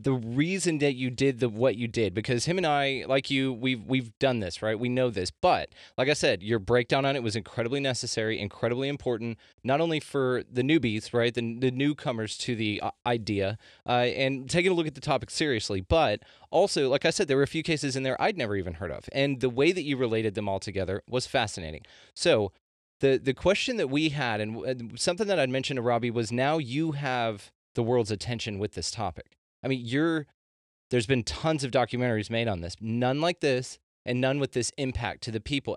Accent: American